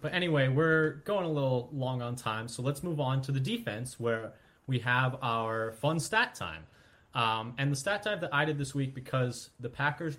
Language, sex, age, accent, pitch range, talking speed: English, male, 20-39, American, 115-140 Hz, 210 wpm